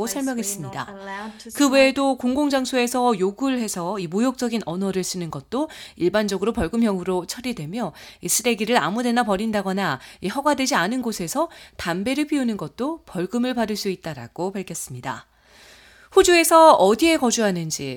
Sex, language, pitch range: female, Korean, 180-245 Hz